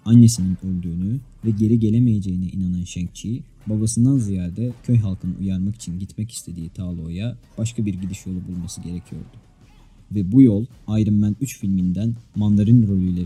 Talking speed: 140 wpm